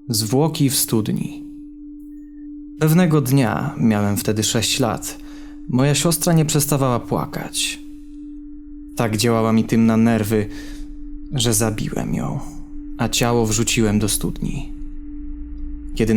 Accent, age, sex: native, 20-39, male